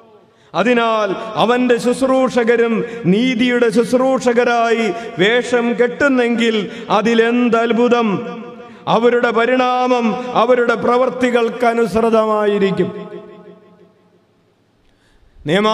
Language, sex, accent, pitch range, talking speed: English, male, Indian, 210-230 Hz, 90 wpm